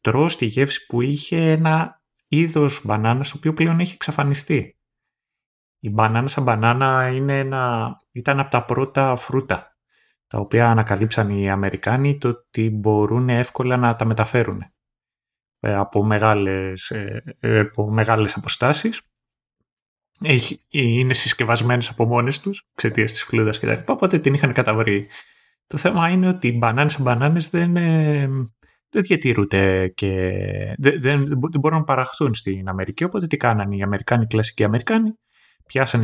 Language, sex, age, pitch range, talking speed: Greek, male, 30-49, 110-145 Hz, 145 wpm